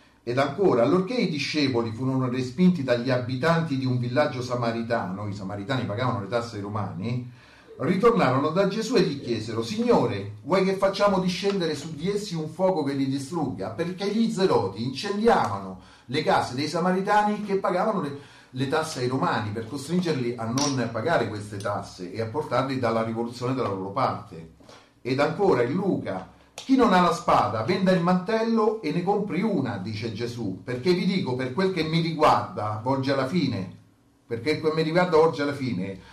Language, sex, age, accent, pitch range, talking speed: Italian, male, 40-59, native, 120-180 Hz, 175 wpm